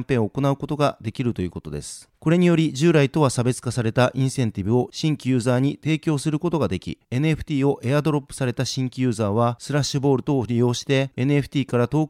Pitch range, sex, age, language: 120-145 Hz, male, 40-59, Japanese